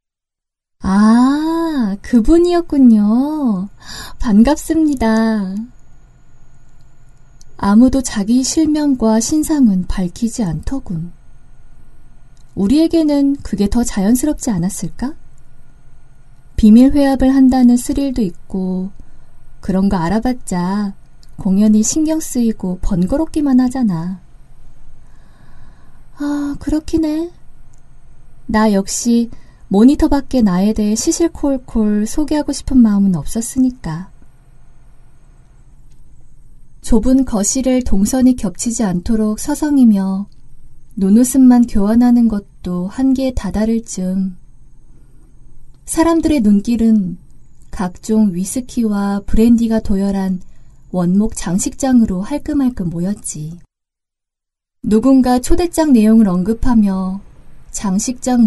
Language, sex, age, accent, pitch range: Korean, female, 20-39, native, 190-260 Hz